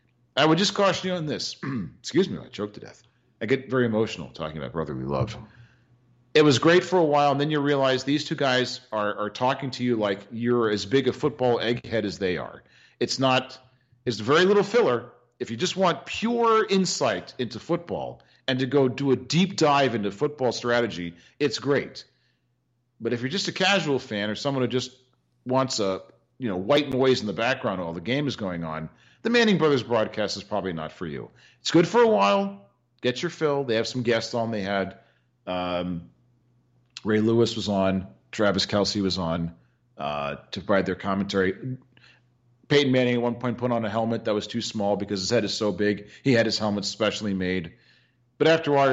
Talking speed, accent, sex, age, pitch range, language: 205 wpm, American, male, 40-59, 100-130 Hz, English